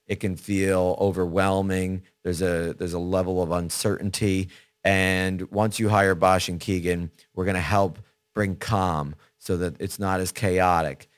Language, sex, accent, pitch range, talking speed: English, male, American, 85-100 Hz, 160 wpm